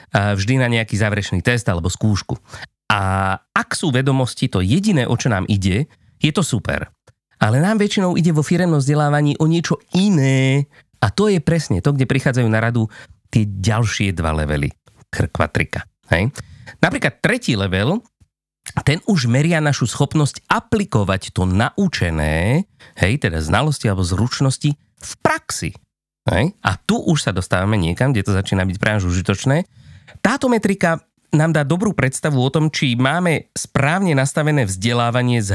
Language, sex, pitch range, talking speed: Slovak, male, 105-150 Hz, 155 wpm